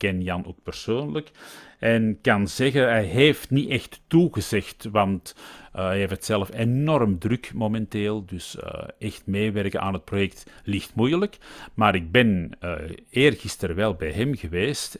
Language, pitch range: Dutch, 90-110 Hz